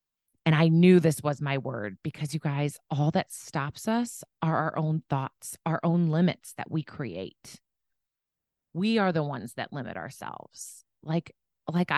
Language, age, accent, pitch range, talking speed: English, 30-49, American, 140-175 Hz, 165 wpm